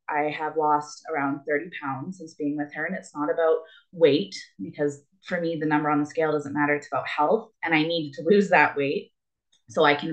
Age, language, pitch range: 20-39, English, 150-190 Hz